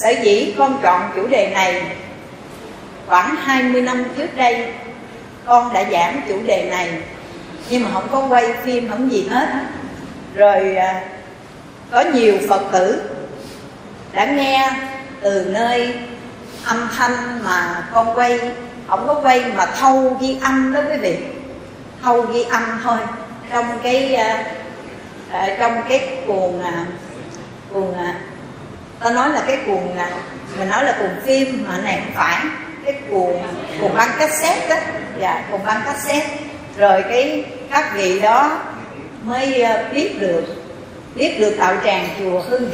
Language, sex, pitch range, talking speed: Vietnamese, female, 190-260 Hz, 140 wpm